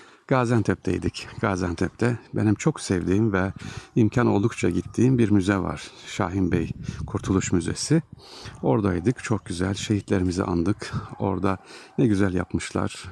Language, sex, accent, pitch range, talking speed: Turkish, male, native, 90-115 Hz, 115 wpm